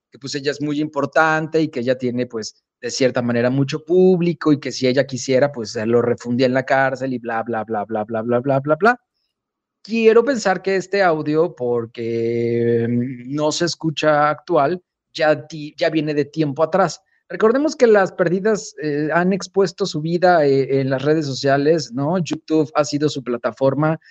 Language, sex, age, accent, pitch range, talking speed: English, male, 30-49, Mexican, 135-165 Hz, 185 wpm